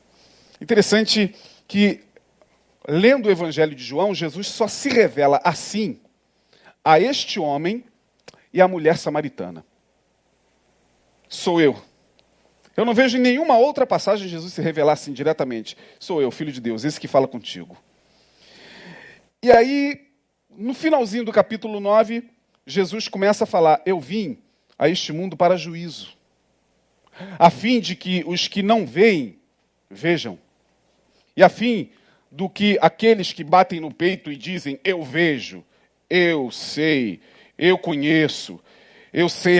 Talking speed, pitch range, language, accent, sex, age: 135 wpm, 150-225 Hz, Spanish, Brazilian, male, 40-59